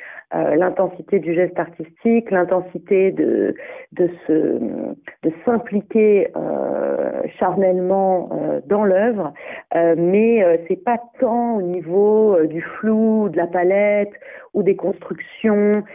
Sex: female